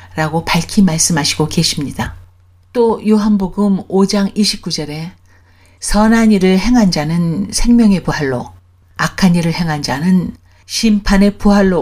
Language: Korean